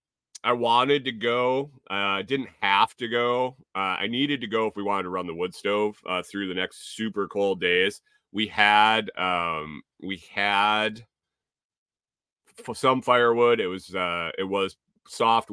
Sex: male